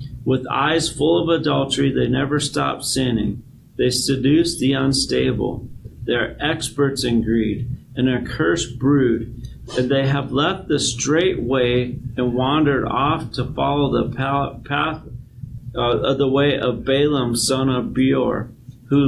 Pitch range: 120-140 Hz